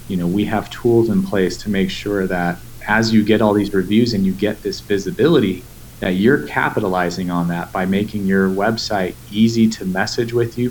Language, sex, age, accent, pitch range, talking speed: English, male, 30-49, American, 95-115 Hz, 200 wpm